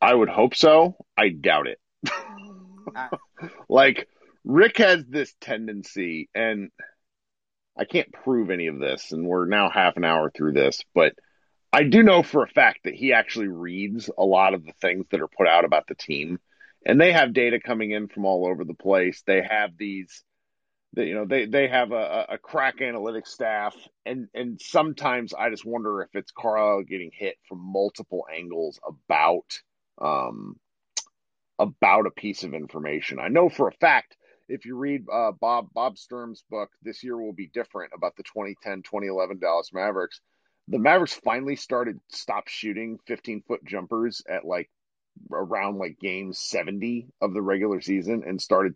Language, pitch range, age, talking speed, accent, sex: English, 95-125 Hz, 40-59, 170 wpm, American, male